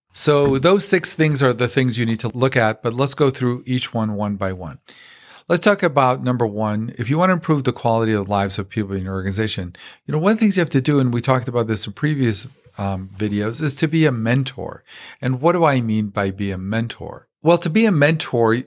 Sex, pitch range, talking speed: male, 110-135 Hz, 250 wpm